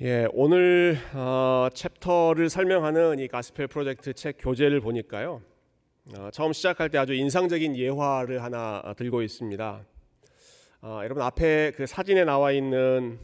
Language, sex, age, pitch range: Korean, male, 30-49, 120-150 Hz